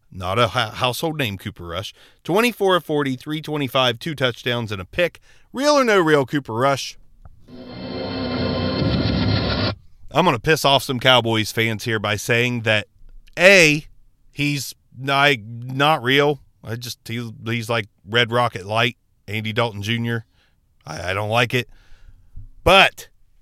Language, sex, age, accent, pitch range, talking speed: English, male, 40-59, American, 105-155 Hz, 125 wpm